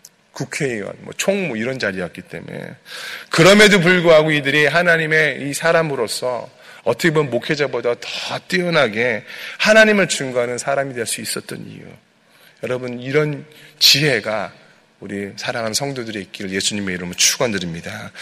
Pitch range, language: 110-155 Hz, Korean